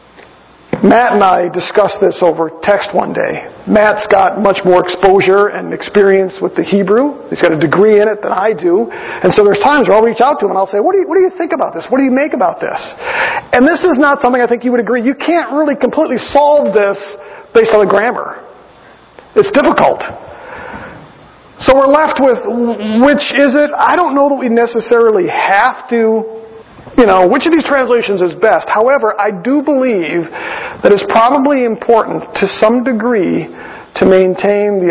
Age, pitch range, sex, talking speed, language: 40-59, 200-285 Hz, male, 200 wpm, English